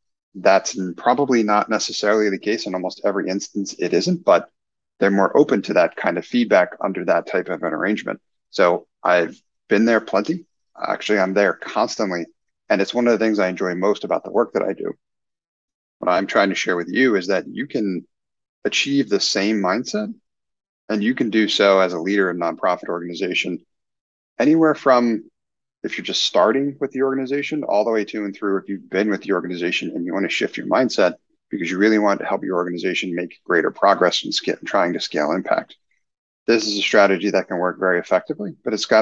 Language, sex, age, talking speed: English, male, 30-49, 205 wpm